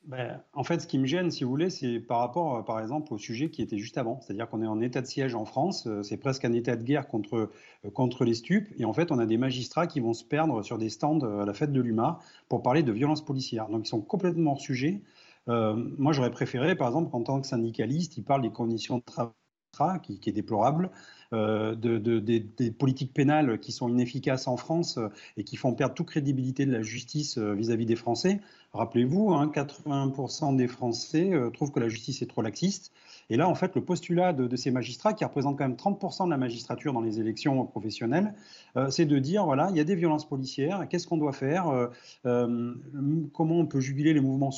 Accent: French